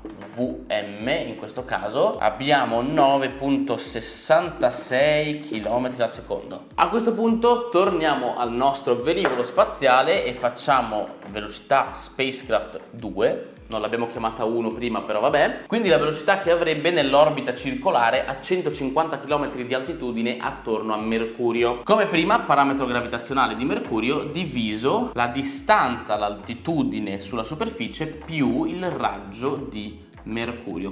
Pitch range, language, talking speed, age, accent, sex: 115-155 Hz, Italian, 115 wpm, 20-39, native, male